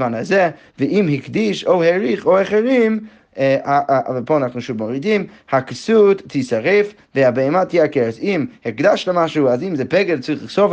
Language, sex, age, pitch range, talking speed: Hebrew, male, 20-39, 130-175 Hz, 140 wpm